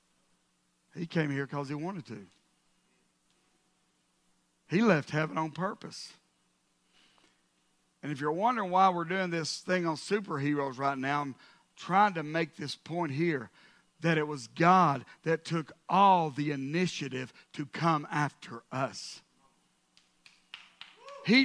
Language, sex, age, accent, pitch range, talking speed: English, male, 50-69, American, 150-230 Hz, 130 wpm